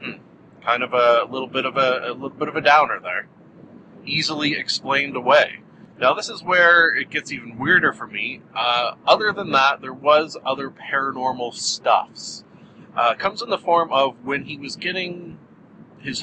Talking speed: 180 wpm